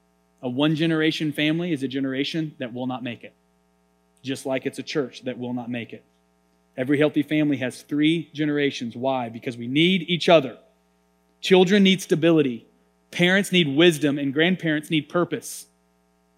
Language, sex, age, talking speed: English, male, 30-49, 160 wpm